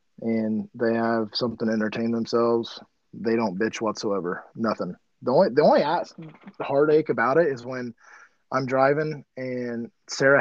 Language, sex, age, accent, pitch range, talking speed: English, male, 20-39, American, 115-130 Hz, 145 wpm